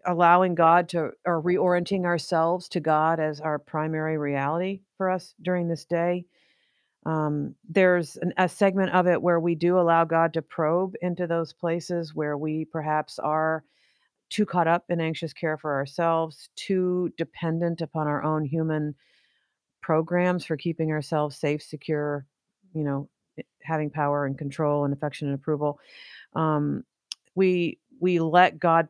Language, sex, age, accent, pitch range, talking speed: English, female, 40-59, American, 150-175 Hz, 150 wpm